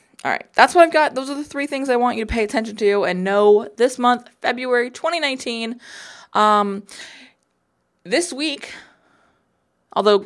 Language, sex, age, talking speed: English, female, 20-39, 165 wpm